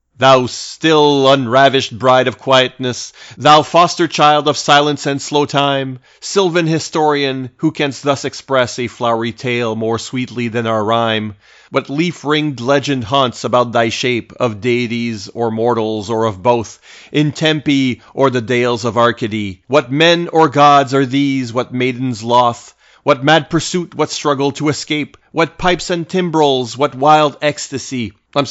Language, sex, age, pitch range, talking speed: English, male, 30-49, 115-145 Hz, 150 wpm